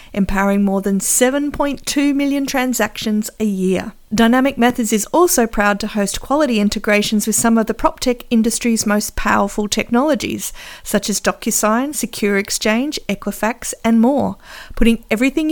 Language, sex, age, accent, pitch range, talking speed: English, female, 50-69, Australian, 200-255 Hz, 145 wpm